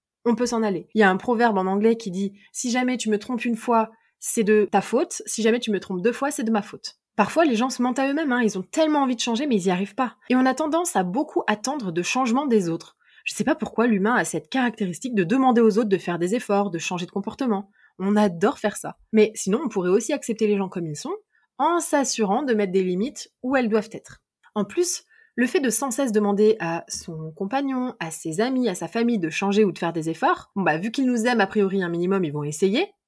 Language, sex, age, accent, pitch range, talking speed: French, female, 20-39, French, 190-255 Hz, 270 wpm